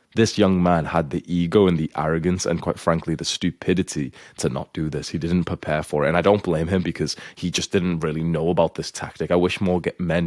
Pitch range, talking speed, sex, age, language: 85-95 Hz, 240 wpm, male, 20-39, English